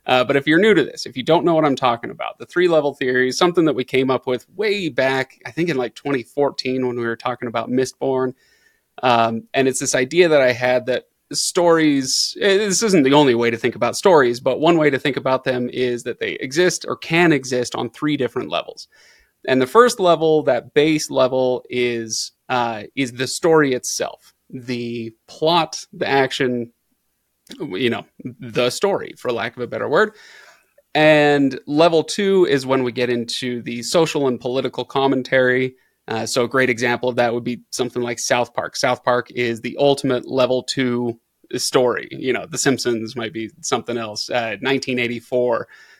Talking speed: 190 wpm